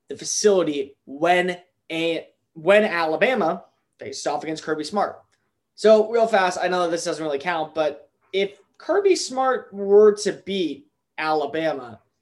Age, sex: 20-39, male